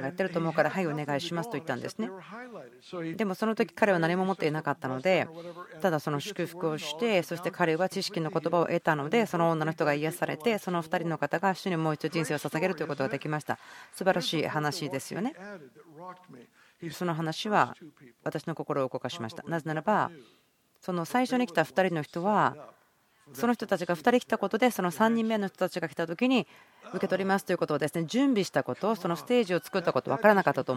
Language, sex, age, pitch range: Japanese, female, 40-59, 150-195 Hz